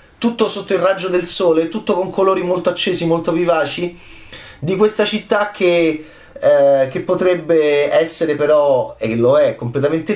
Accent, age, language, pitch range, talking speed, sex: native, 30-49, Italian, 135-185 Hz, 155 wpm, male